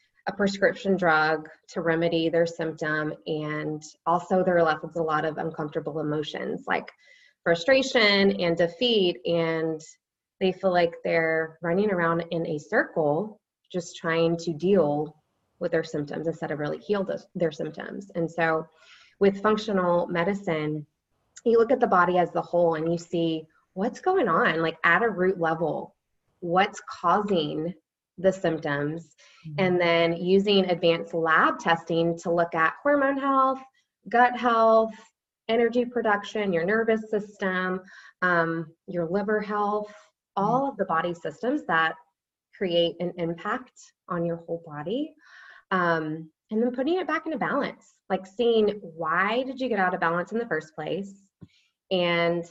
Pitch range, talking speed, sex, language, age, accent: 165-210 Hz, 145 wpm, female, English, 20-39, American